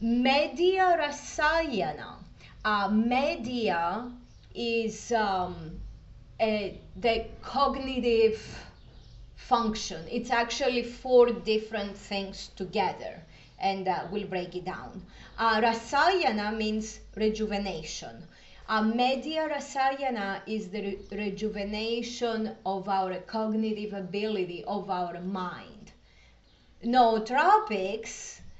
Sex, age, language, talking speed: female, 30-49, English, 90 wpm